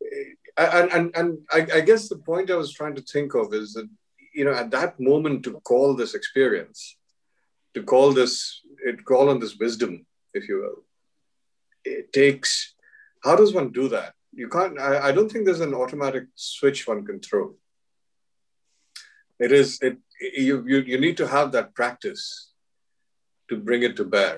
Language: English